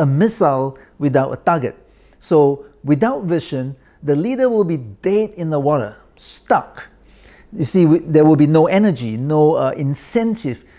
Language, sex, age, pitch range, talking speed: English, male, 50-69, 135-200 Hz, 145 wpm